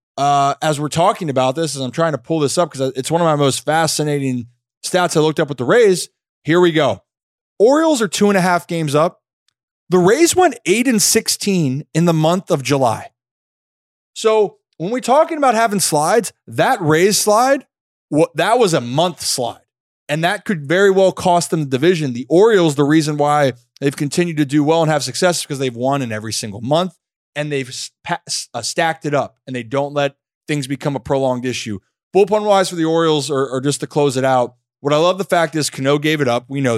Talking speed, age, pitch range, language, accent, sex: 210 wpm, 20-39, 135-170 Hz, English, American, male